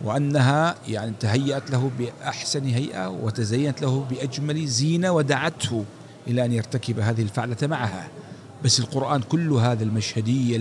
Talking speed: 125 wpm